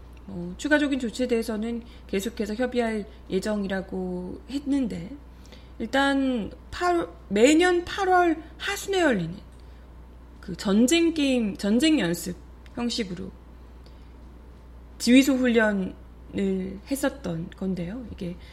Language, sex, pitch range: Korean, female, 185-280 Hz